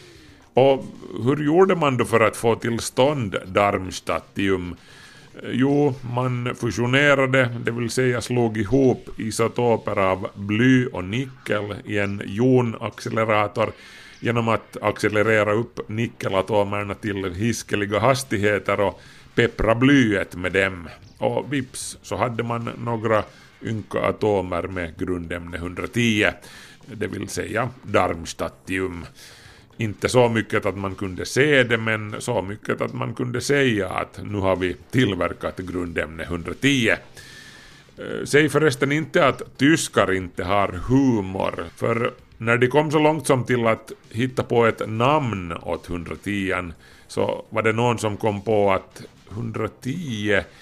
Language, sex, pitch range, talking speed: Swedish, male, 95-125 Hz, 125 wpm